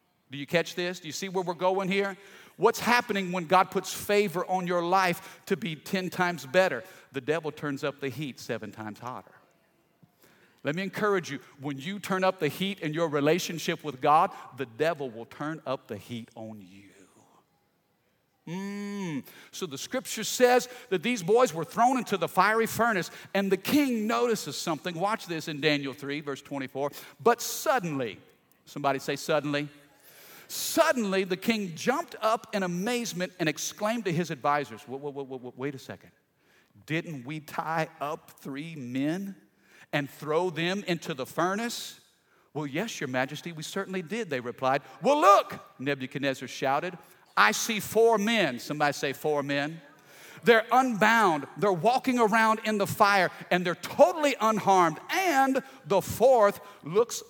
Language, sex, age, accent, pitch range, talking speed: English, male, 50-69, American, 145-205 Hz, 160 wpm